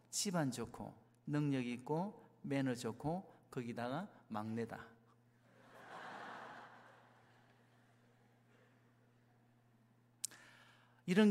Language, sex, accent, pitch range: Korean, male, native, 120-160 Hz